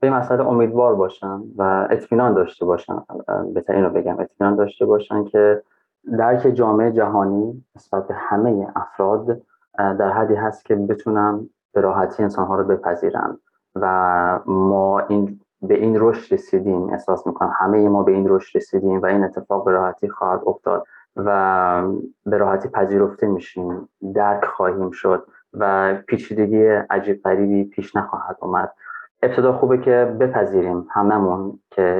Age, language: 20-39, Persian